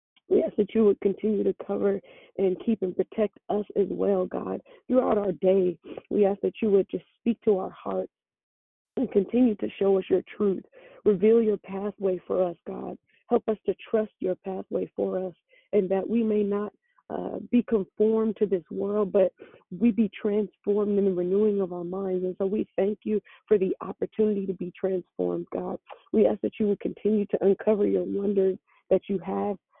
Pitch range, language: 190-215 Hz, English